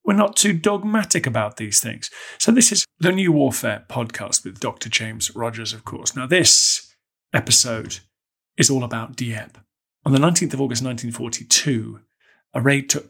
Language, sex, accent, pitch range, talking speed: English, male, British, 115-140 Hz, 165 wpm